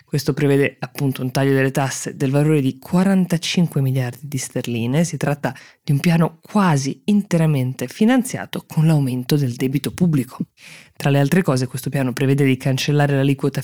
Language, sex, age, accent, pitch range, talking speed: Italian, female, 20-39, native, 130-155 Hz, 165 wpm